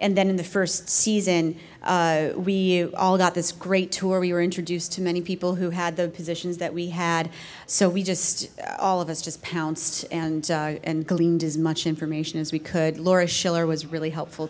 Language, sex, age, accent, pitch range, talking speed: English, female, 30-49, American, 165-190 Hz, 205 wpm